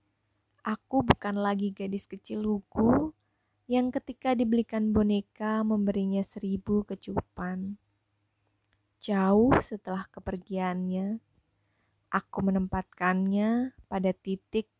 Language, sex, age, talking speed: Indonesian, female, 20-39, 80 wpm